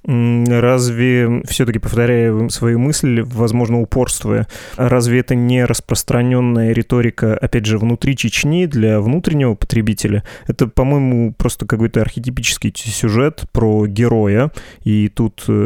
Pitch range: 105-120 Hz